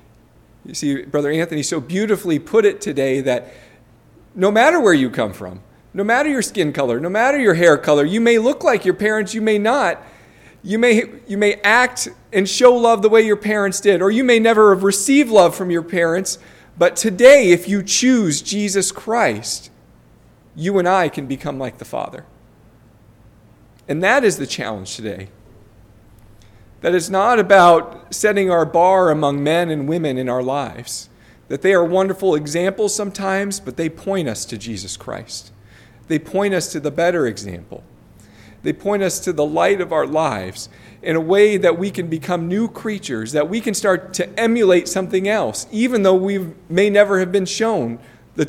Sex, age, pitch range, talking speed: male, 40-59, 125-200 Hz, 185 wpm